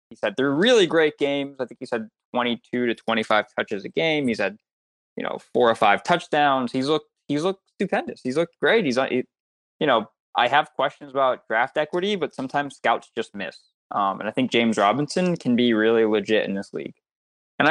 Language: English